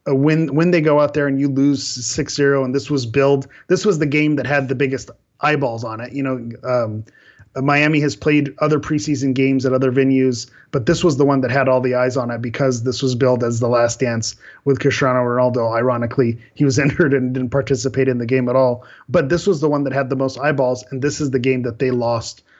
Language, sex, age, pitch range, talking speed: English, male, 30-49, 125-145 Hz, 240 wpm